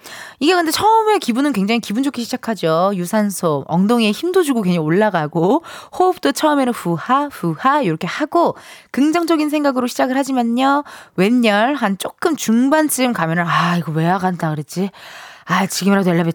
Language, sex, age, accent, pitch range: Korean, female, 20-39, native, 185-280 Hz